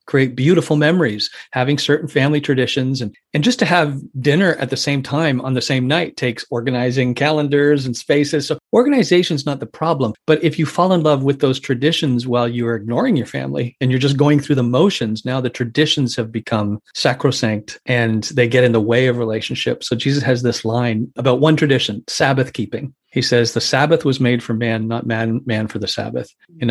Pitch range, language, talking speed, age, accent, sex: 115-145 Hz, English, 205 wpm, 40-59, American, male